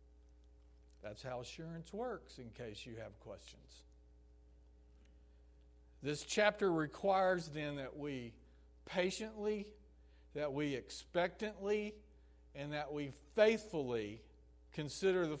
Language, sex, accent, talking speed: English, male, American, 95 wpm